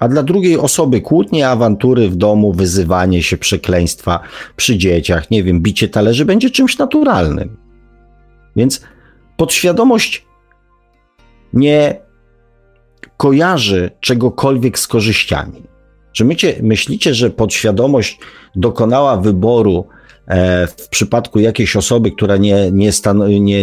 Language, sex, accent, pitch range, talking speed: Polish, male, native, 100-130 Hz, 100 wpm